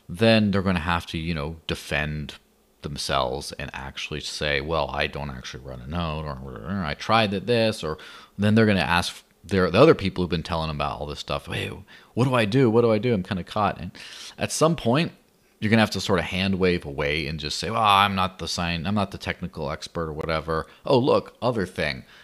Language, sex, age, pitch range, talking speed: English, male, 30-49, 80-105 Hz, 235 wpm